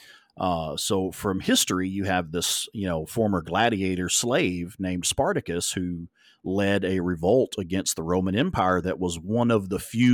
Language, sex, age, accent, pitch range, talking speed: English, male, 40-59, American, 90-110 Hz, 165 wpm